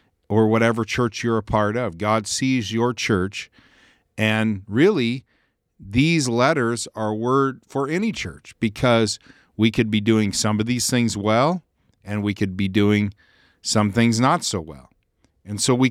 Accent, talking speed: American, 160 wpm